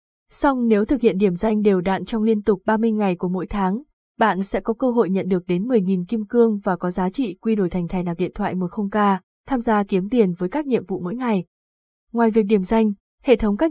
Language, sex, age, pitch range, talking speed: Vietnamese, female, 20-39, 190-230 Hz, 245 wpm